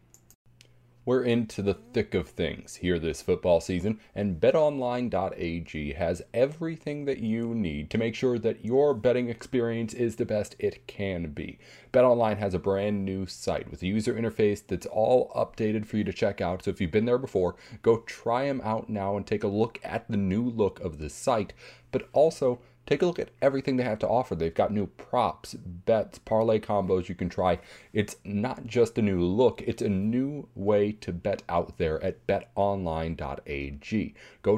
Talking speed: 185 wpm